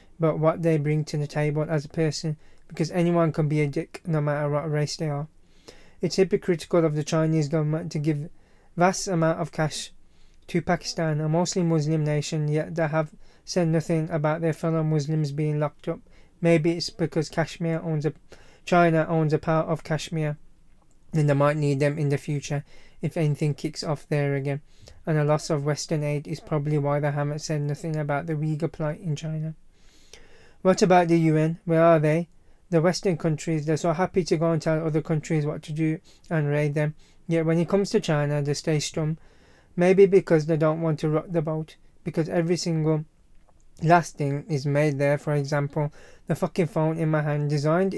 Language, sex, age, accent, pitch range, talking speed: English, male, 20-39, British, 150-165 Hz, 195 wpm